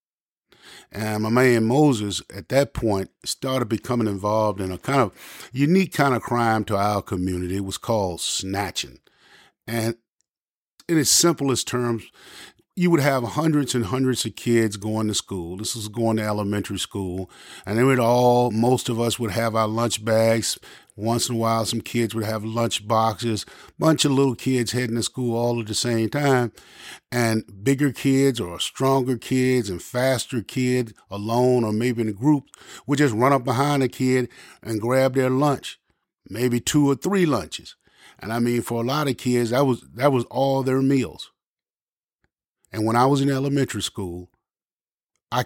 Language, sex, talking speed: English, male, 180 wpm